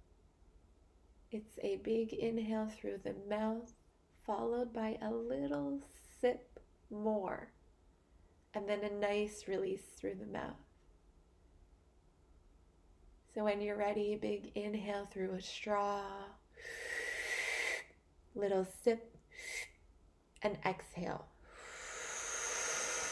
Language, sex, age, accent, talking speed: English, female, 20-39, American, 90 wpm